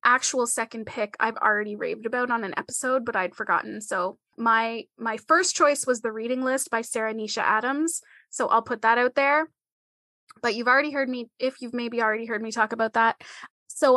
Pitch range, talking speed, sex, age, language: 225-275 Hz, 200 wpm, female, 20-39, English